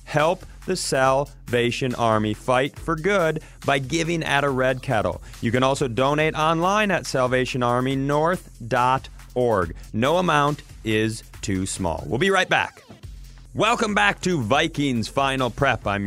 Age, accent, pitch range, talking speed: 30-49, American, 125-165 Hz, 135 wpm